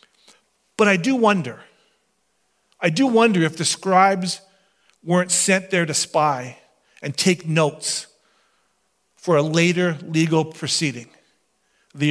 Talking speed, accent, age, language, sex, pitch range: 120 wpm, American, 40-59, English, male, 170-230 Hz